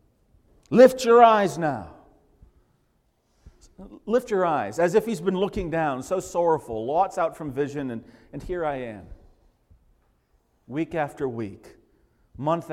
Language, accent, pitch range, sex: English, American, 125-190 Hz, male